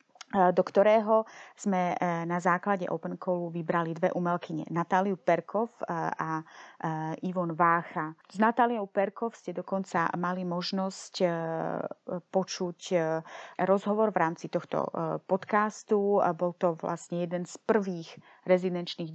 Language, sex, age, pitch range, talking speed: Czech, female, 30-49, 170-205 Hz, 115 wpm